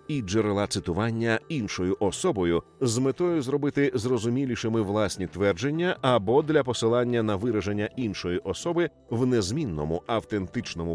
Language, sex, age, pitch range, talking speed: Ukrainian, male, 50-69, 95-130 Hz, 115 wpm